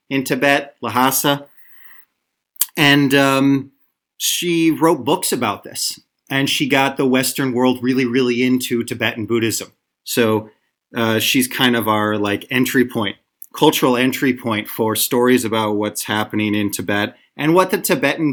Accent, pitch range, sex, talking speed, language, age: American, 115-145 Hz, male, 145 wpm, English, 30-49